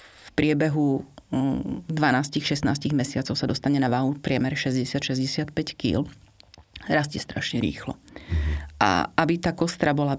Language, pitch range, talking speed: Slovak, 130-150 Hz, 110 wpm